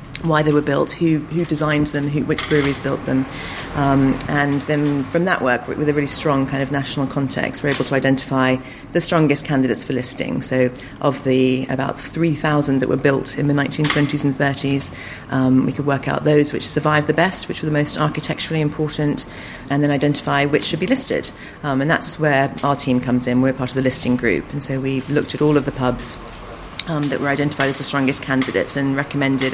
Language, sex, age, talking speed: English, female, 40-59, 215 wpm